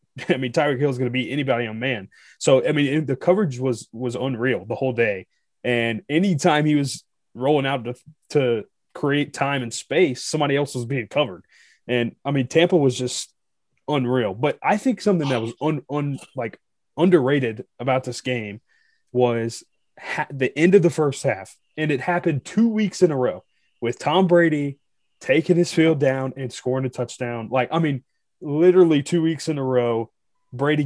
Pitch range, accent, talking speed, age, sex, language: 125-155 Hz, American, 190 wpm, 20-39, male, English